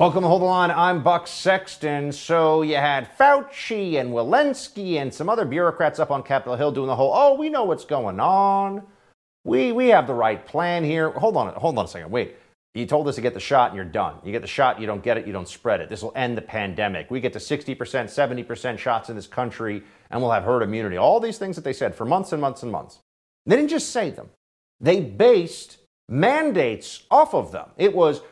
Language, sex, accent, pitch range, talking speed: English, male, American, 110-175 Hz, 235 wpm